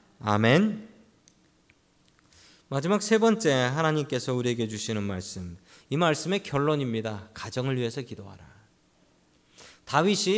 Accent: native